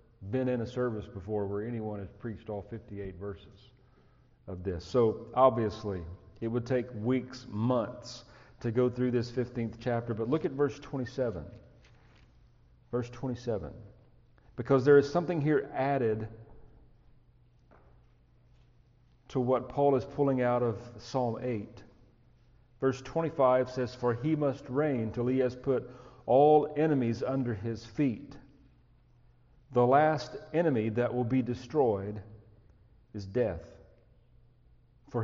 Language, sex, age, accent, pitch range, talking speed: English, male, 40-59, American, 115-135 Hz, 130 wpm